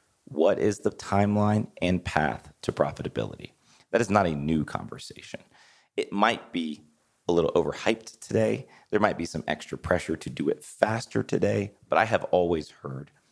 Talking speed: 165 wpm